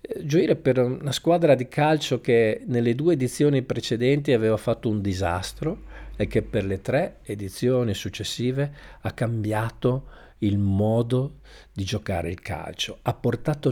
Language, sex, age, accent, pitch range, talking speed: Italian, male, 50-69, native, 105-150 Hz, 140 wpm